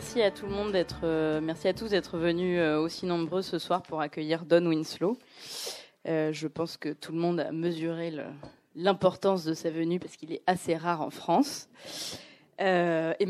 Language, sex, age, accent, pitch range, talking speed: French, female, 20-39, French, 160-185 Hz, 155 wpm